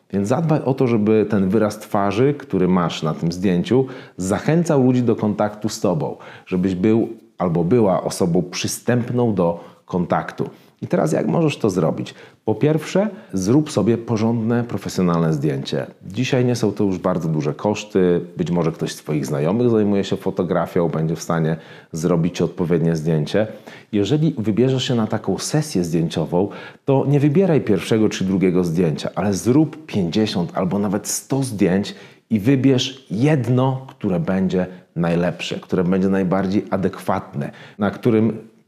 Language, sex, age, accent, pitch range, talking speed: Polish, male, 40-59, native, 90-115 Hz, 150 wpm